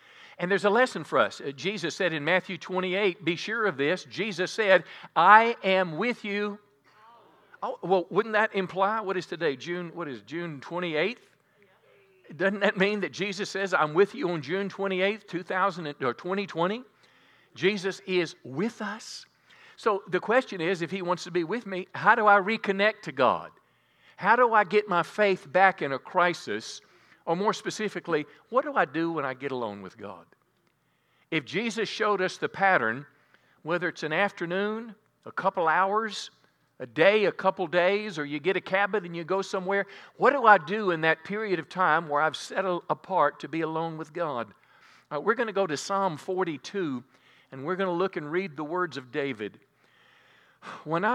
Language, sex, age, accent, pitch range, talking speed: English, male, 50-69, American, 160-200 Hz, 180 wpm